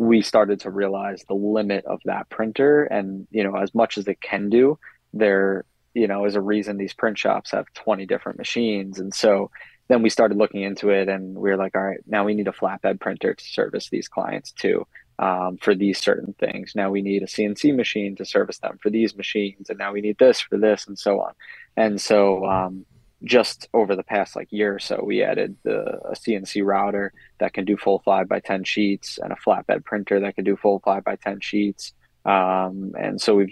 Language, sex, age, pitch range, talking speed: English, male, 20-39, 95-105 Hz, 220 wpm